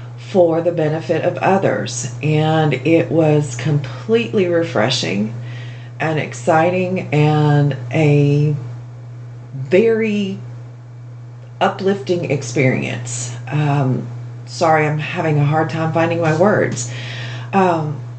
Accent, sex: American, female